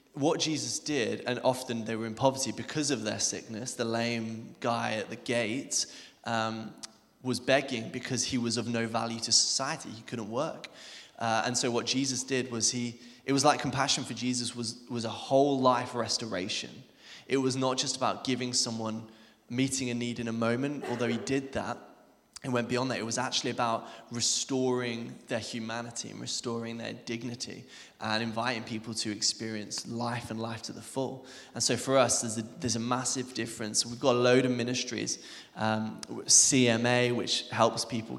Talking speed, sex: 180 wpm, male